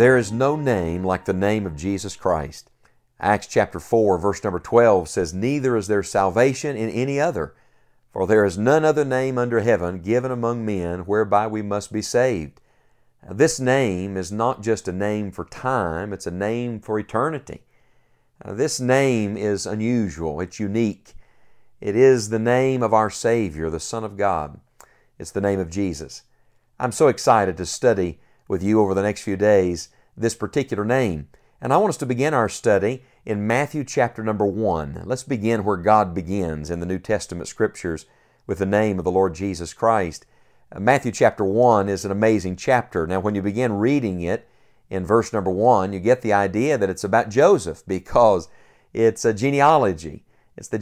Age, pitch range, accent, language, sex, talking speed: 50-69, 95-120 Hz, American, English, male, 180 wpm